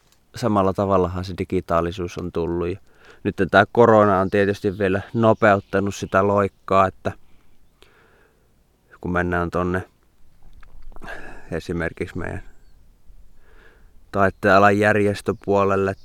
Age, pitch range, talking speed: 20-39, 90-100 Hz, 90 wpm